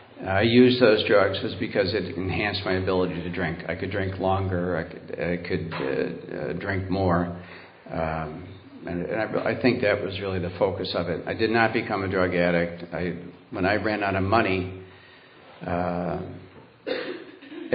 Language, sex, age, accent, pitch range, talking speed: English, male, 50-69, American, 90-110 Hz, 175 wpm